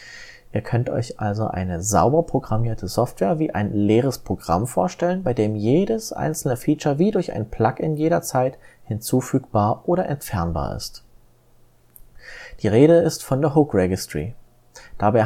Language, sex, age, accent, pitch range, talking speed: German, male, 30-49, German, 110-150 Hz, 140 wpm